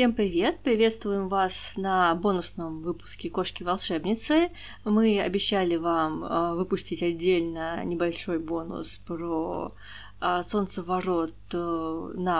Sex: female